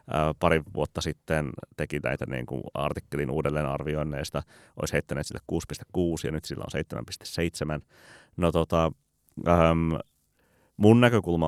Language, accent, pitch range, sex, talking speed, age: Finnish, native, 75-85 Hz, male, 125 wpm, 30-49